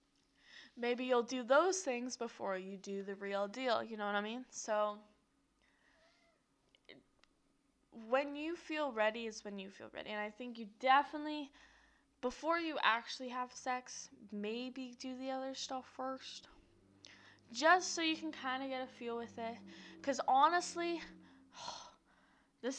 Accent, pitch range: American, 210-275 Hz